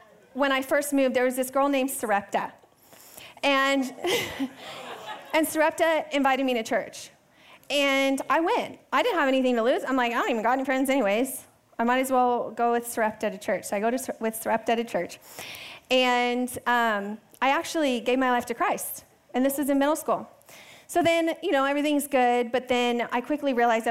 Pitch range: 225-275 Hz